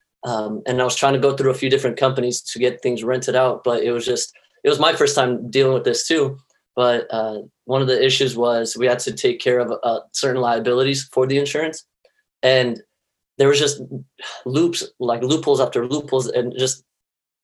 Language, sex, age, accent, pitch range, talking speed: English, male, 20-39, American, 125-140 Hz, 205 wpm